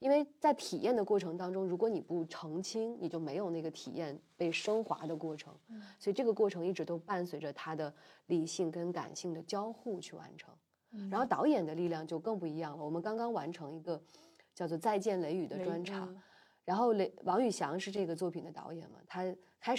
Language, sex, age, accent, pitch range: Chinese, female, 20-39, native, 165-215 Hz